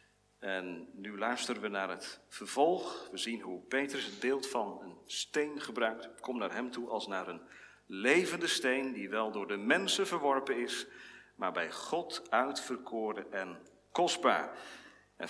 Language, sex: Dutch, male